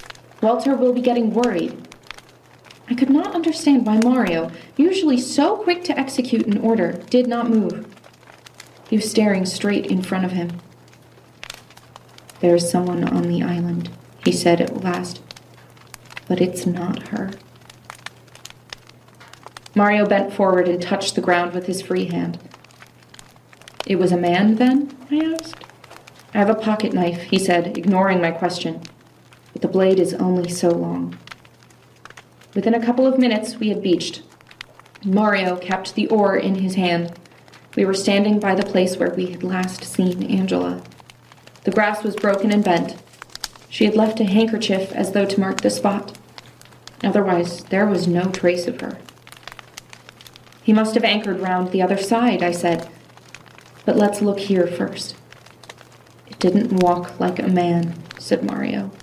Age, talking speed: 30-49, 155 wpm